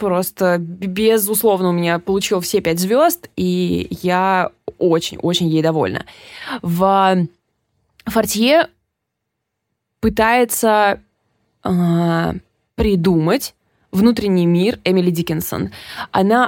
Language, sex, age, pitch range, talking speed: Russian, female, 20-39, 175-225 Hz, 85 wpm